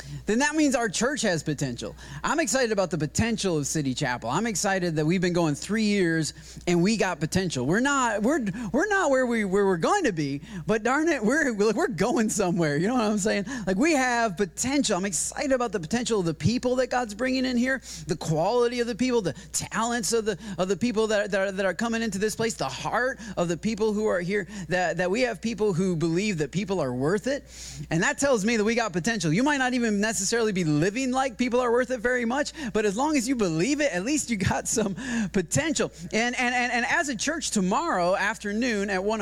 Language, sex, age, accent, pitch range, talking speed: English, male, 30-49, American, 175-245 Hz, 240 wpm